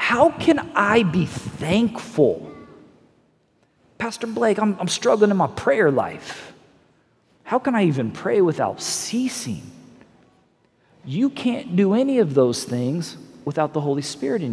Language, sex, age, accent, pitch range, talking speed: English, male, 40-59, American, 155-230 Hz, 135 wpm